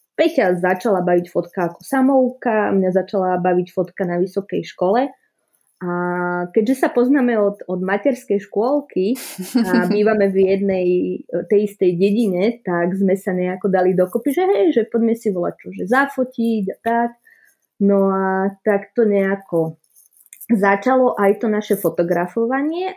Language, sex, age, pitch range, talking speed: Czech, female, 20-39, 175-225 Hz, 140 wpm